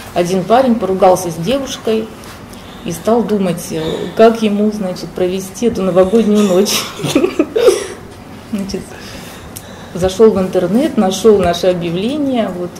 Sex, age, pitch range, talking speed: female, 30-49, 180-225 Hz, 110 wpm